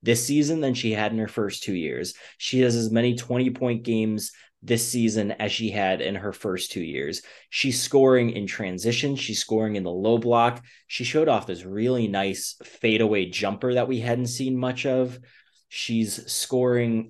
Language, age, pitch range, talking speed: English, 20-39, 105-125 Hz, 185 wpm